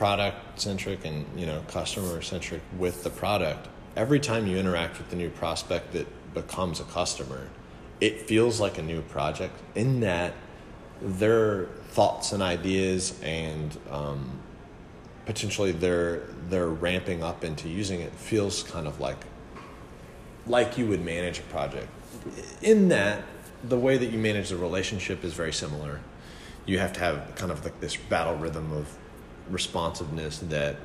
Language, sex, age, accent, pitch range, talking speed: English, male, 30-49, American, 75-100 Hz, 150 wpm